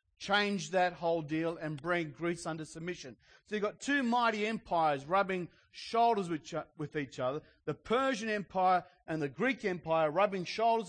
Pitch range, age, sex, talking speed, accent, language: 155-205 Hz, 40-59, male, 160 wpm, Australian, English